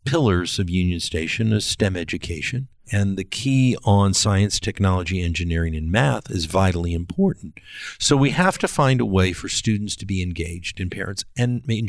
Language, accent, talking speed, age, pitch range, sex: English, American, 175 wpm, 50-69, 90-115 Hz, male